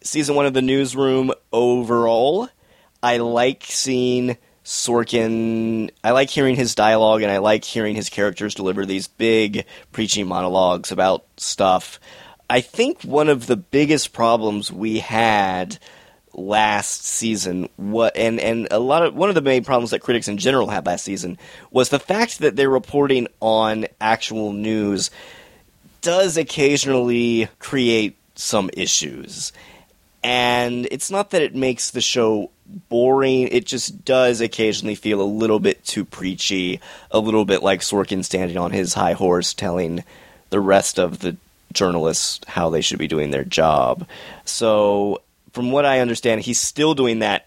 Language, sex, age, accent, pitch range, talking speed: English, male, 30-49, American, 100-125 Hz, 155 wpm